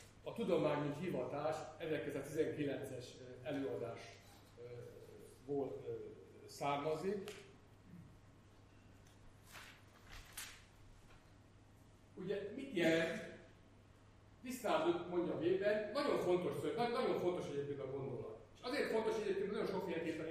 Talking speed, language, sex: 75 wpm, Hungarian, male